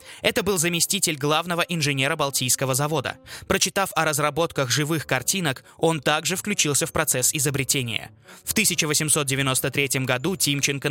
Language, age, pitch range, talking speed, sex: Russian, 20-39, 130-170 Hz, 120 wpm, male